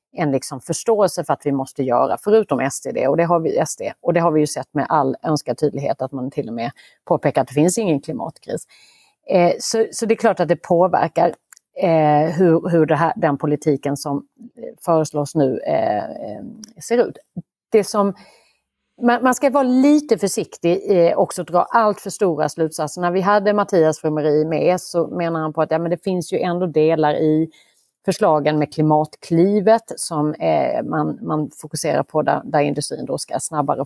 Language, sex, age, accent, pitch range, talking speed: Swedish, female, 40-59, native, 150-210 Hz, 185 wpm